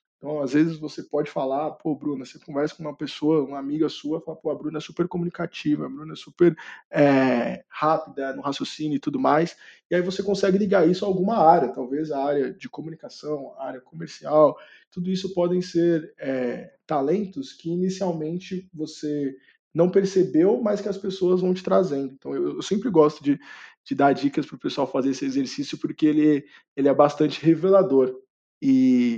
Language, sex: Portuguese, male